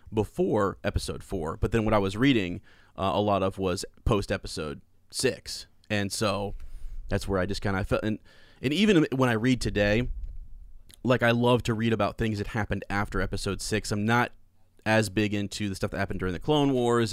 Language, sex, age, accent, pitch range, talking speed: English, male, 30-49, American, 95-115 Hz, 205 wpm